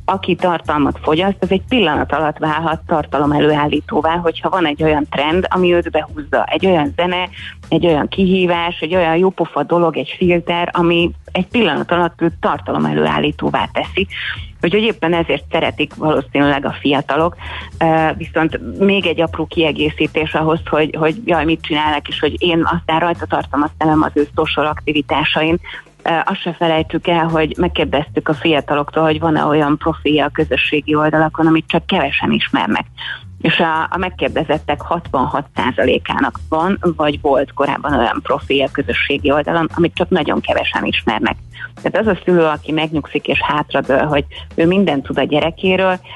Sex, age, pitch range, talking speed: female, 30-49, 150-170 Hz, 155 wpm